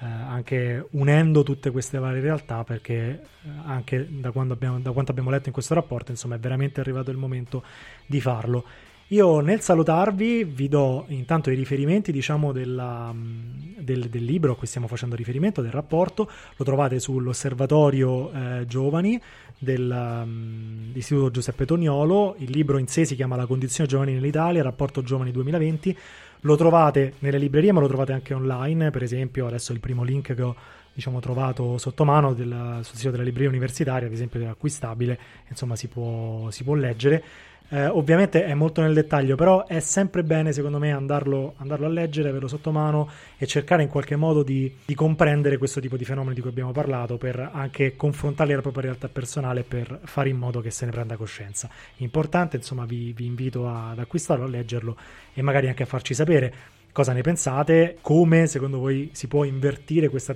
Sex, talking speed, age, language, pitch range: male, 180 wpm, 20-39, Italian, 125-150 Hz